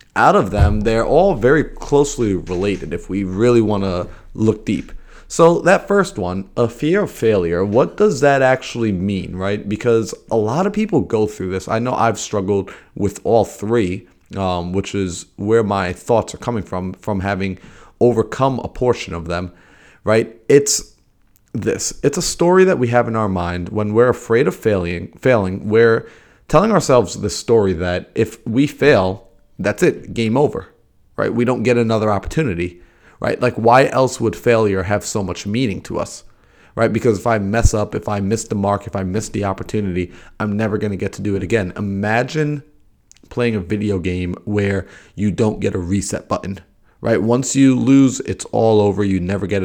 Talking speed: 185 wpm